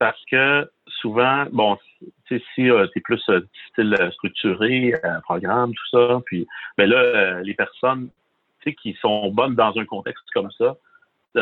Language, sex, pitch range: French, male, 115-150 Hz